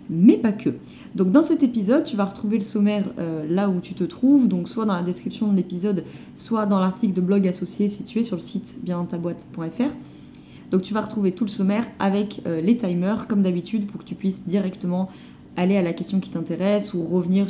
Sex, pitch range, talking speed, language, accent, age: female, 180-225 Hz, 215 wpm, French, French, 20-39